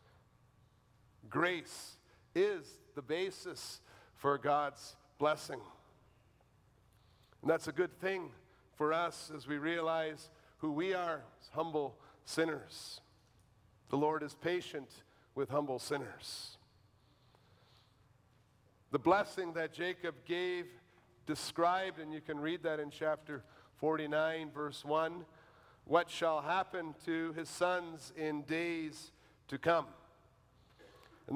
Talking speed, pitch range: 110 wpm, 140-190 Hz